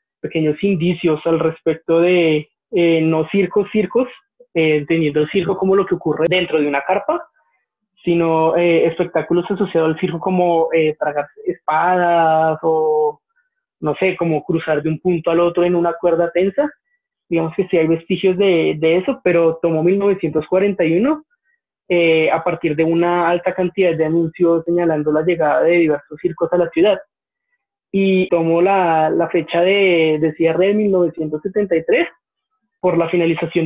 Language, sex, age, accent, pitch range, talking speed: Spanish, male, 20-39, Colombian, 160-190 Hz, 155 wpm